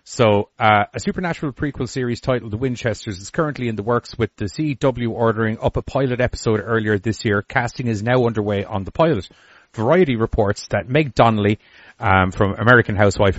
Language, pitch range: English, 105-125 Hz